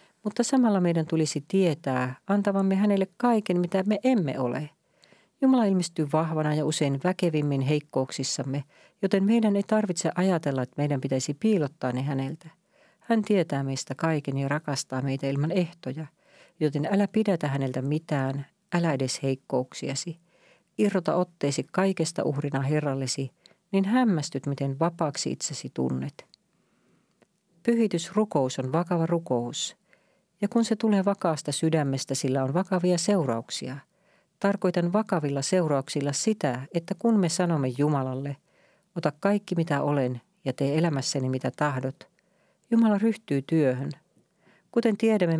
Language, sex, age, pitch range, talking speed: Finnish, female, 40-59, 140-190 Hz, 125 wpm